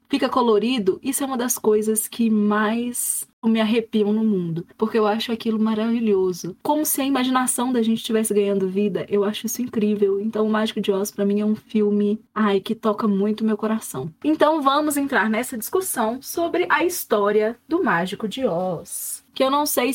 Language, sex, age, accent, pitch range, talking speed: Portuguese, female, 20-39, Brazilian, 205-275 Hz, 195 wpm